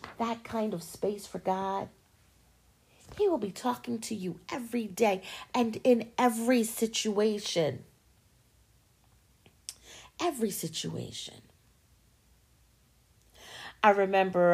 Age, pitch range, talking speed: 40-59, 180-240 Hz, 90 wpm